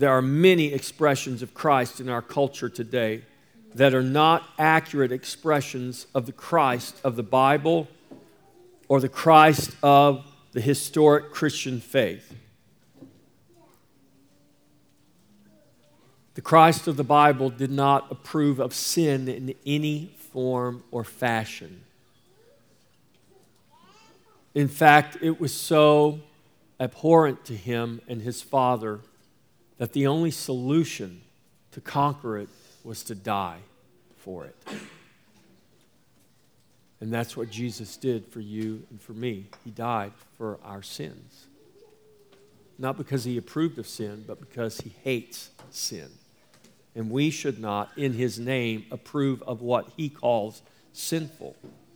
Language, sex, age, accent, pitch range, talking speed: English, male, 50-69, American, 115-150 Hz, 120 wpm